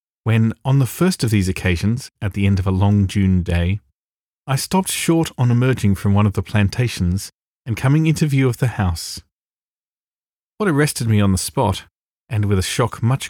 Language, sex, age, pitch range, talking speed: English, male, 40-59, 95-135 Hz, 195 wpm